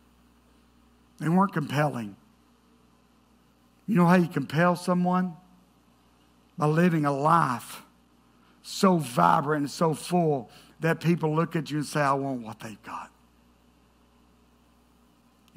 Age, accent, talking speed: 60-79, American, 120 wpm